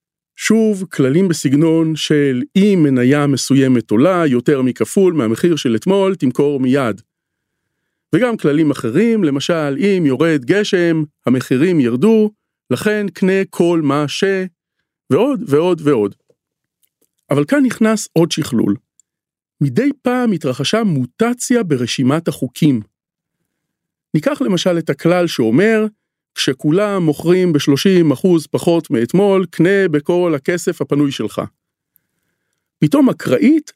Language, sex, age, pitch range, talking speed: Hebrew, male, 40-59, 145-210 Hz, 105 wpm